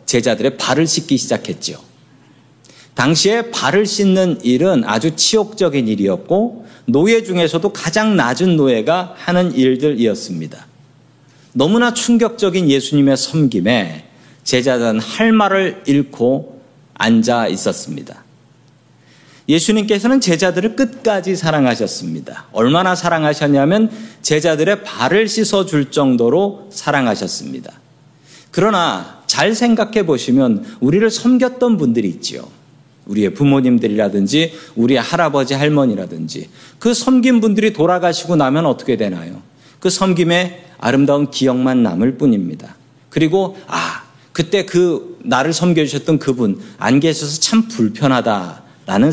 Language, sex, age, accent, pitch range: Korean, male, 40-59, native, 140-210 Hz